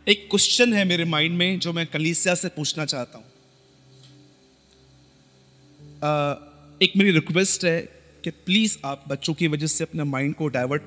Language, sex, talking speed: Hindi, male, 160 wpm